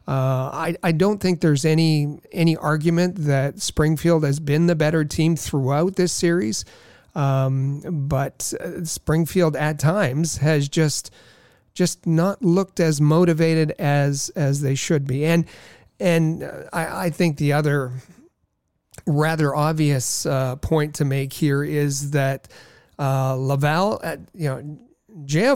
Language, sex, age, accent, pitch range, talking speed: English, male, 40-59, American, 140-165 Hz, 135 wpm